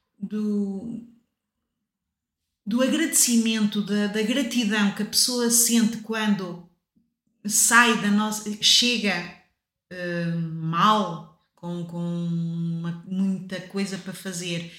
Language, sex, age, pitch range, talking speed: Portuguese, female, 30-49, 180-230 Hz, 95 wpm